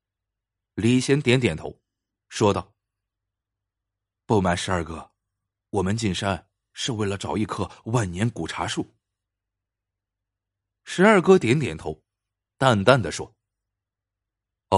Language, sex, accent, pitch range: Chinese, male, native, 100-115 Hz